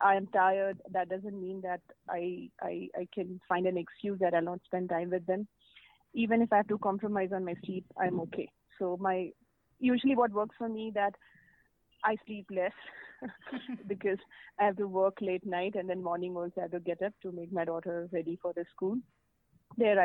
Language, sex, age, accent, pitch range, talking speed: English, female, 30-49, Indian, 175-200 Hz, 200 wpm